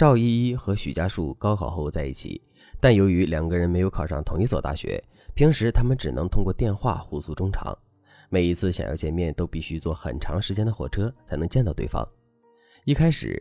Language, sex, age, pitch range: Chinese, male, 20-39, 80-115 Hz